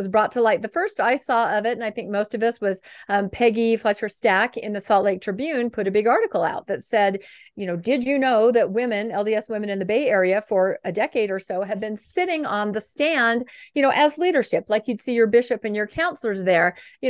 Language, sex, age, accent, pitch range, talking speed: English, female, 40-59, American, 205-260 Hz, 250 wpm